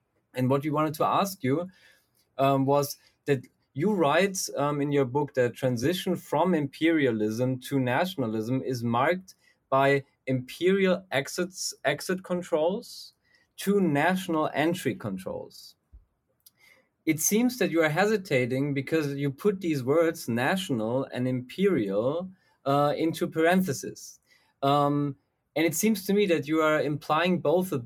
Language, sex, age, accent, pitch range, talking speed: English, male, 30-49, German, 130-170 Hz, 130 wpm